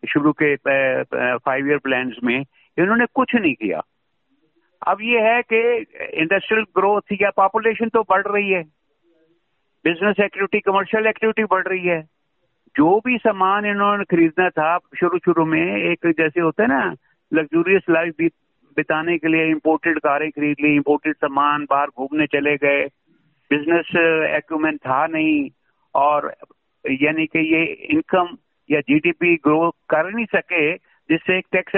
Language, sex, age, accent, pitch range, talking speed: Hindi, male, 60-79, native, 150-195 Hz, 140 wpm